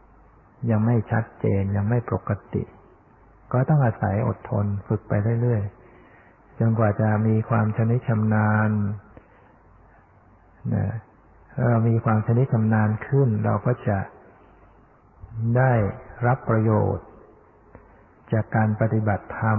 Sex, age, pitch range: male, 60-79, 105-115 Hz